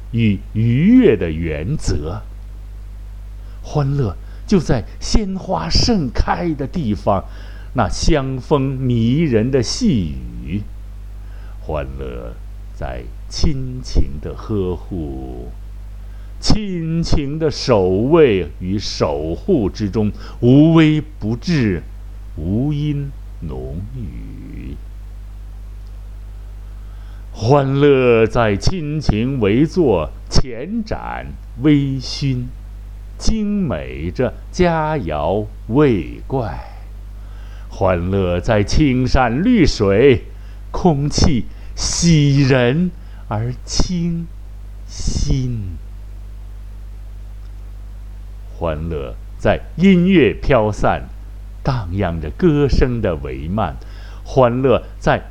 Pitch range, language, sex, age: 100-135 Hz, Chinese, male, 60-79